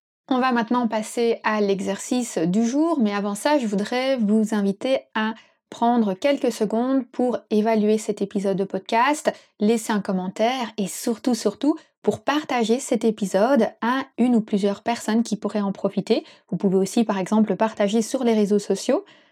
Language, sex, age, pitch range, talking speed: French, female, 20-39, 205-240 Hz, 170 wpm